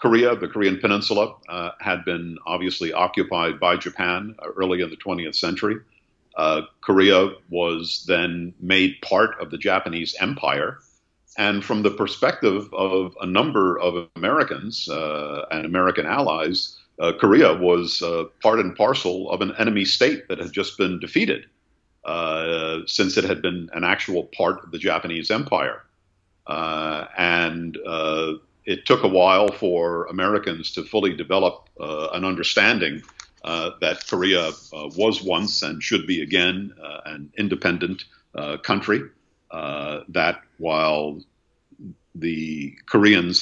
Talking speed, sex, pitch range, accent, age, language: 140 wpm, male, 80-95 Hz, American, 50-69, English